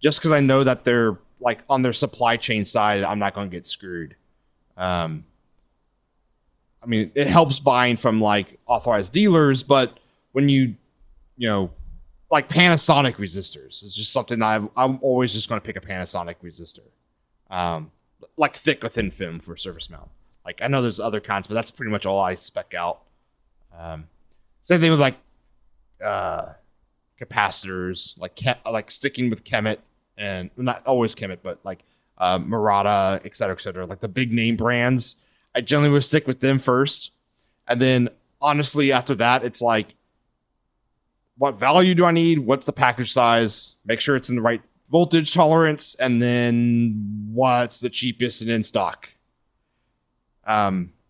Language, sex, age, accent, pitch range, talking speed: English, male, 30-49, American, 95-135 Hz, 165 wpm